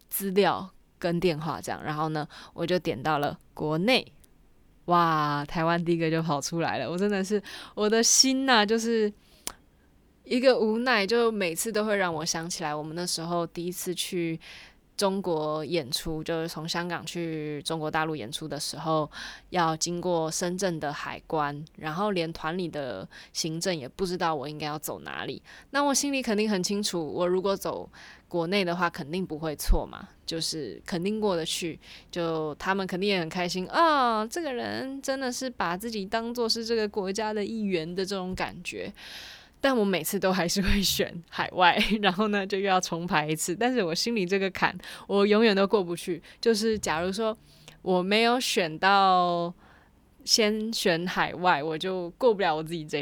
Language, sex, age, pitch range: Chinese, female, 20-39, 160-205 Hz